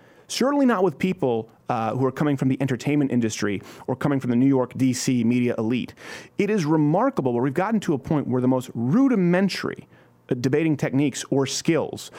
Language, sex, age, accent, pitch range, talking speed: English, male, 30-49, American, 135-205 Hz, 185 wpm